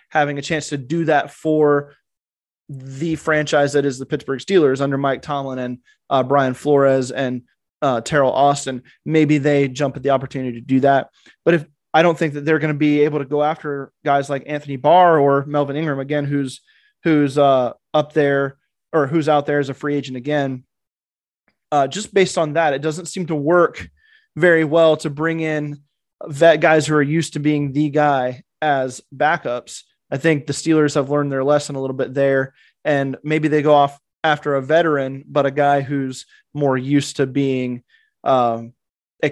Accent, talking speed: American, 190 wpm